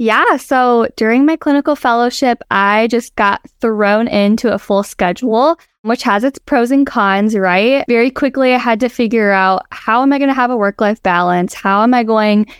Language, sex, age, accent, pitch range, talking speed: English, female, 10-29, American, 195-235 Hz, 195 wpm